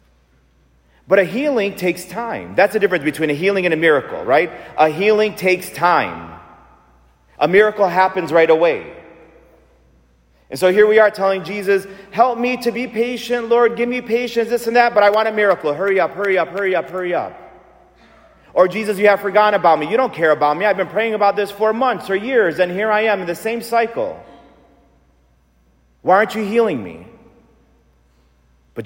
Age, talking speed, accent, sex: 40-59, 190 wpm, American, male